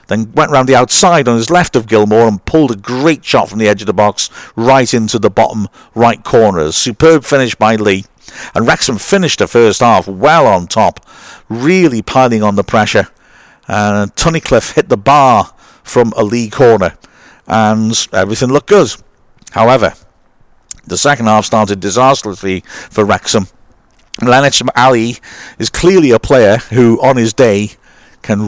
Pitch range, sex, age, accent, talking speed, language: 105-125 Hz, male, 50-69, British, 165 wpm, English